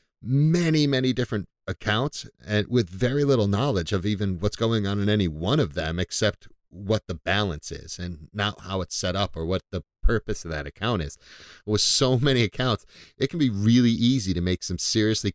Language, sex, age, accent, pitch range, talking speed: English, male, 40-59, American, 85-110 Hz, 200 wpm